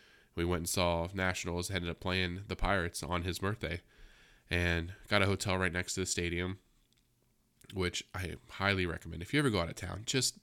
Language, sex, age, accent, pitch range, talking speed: English, male, 20-39, American, 85-100 Hz, 195 wpm